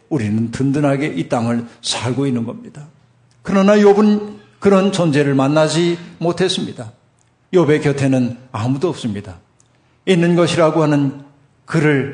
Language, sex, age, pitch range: Korean, male, 50-69, 130-170 Hz